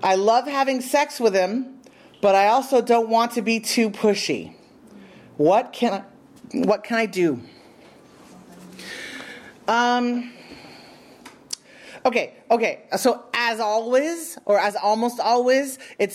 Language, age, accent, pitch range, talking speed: English, 40-59, American, 195-250 Hz, 125 wpm